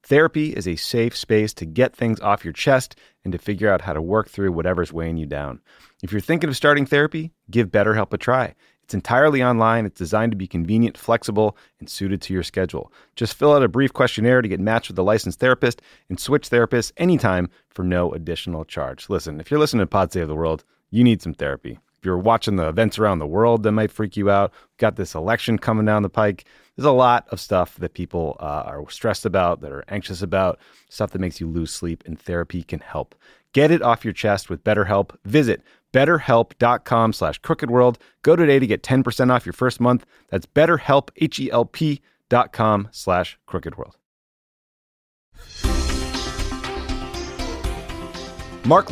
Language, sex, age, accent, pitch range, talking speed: English, male, 30-49, American, 90-120 Hz, 190 wpm